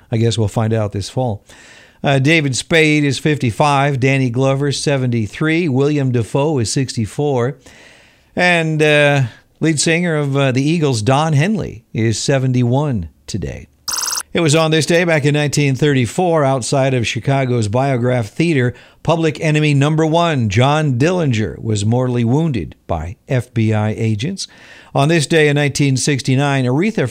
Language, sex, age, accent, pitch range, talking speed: English, male, 50-69, American, 115-155 Hz, 135 wpm